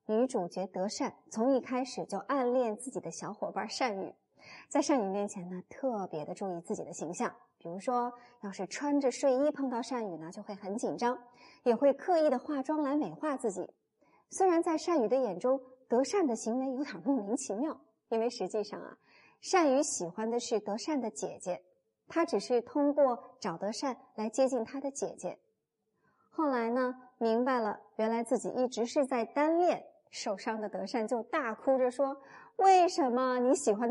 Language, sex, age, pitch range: Chinese, male, 20-39, 210-275 Hz